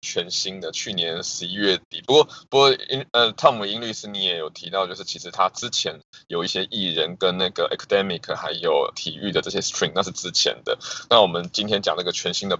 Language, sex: Chinese, male